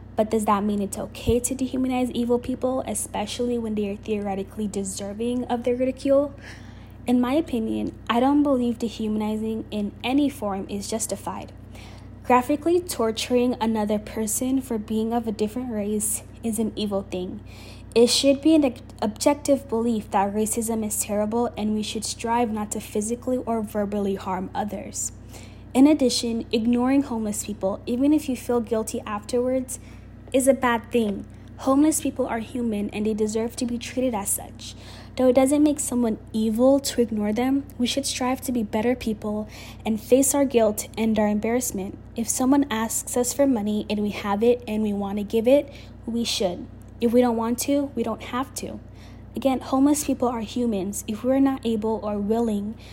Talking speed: 175 wpm